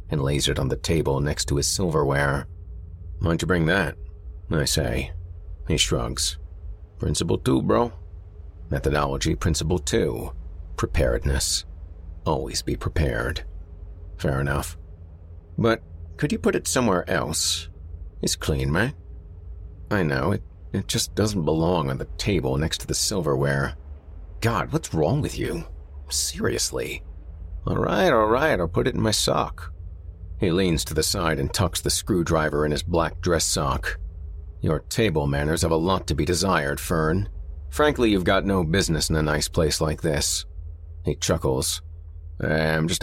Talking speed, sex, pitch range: 155 wpm, male, 75-85 Hz